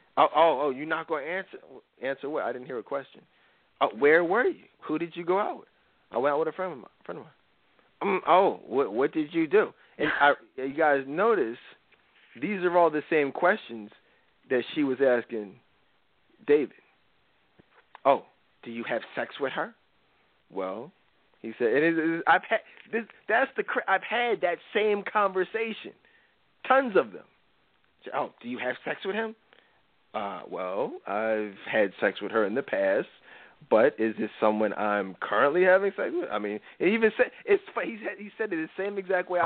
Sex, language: male, English